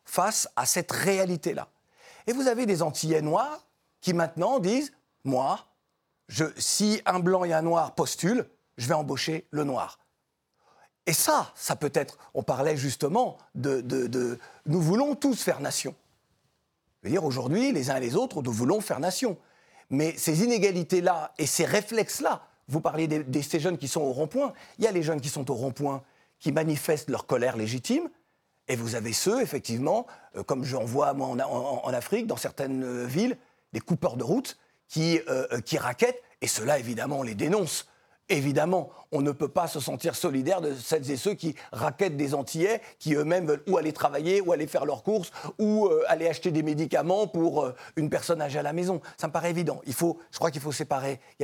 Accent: French